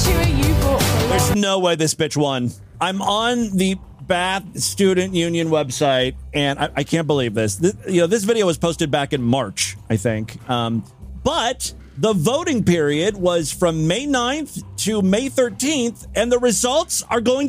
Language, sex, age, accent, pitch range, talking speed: English, male, 40-59, American, 150-245 Hz, 165 wpm